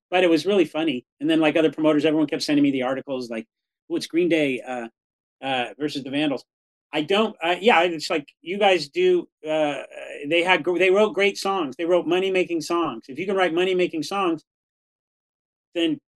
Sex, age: male, 30-49